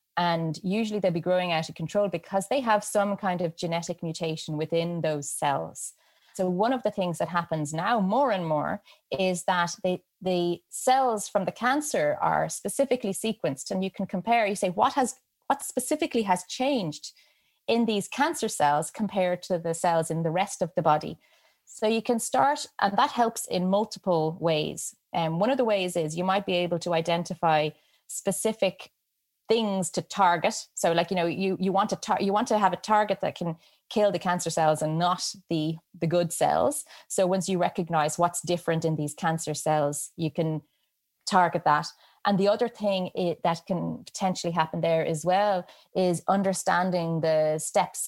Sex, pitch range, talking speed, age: female, 165-200 Hz, 190 wpm, 30-49